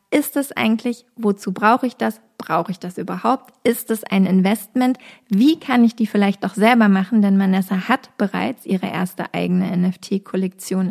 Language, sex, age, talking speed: German, female, 20-39, 170 wpm